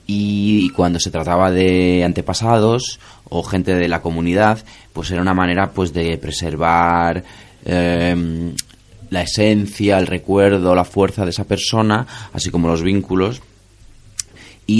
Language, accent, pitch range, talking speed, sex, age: Spanish, Spanish, 80-100 Hz, 135 wpm, male, 30-49